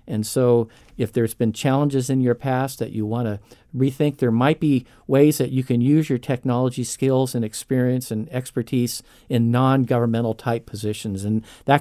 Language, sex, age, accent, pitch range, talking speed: English, male, 50-69, American, 115-140 Hz, 180 wpm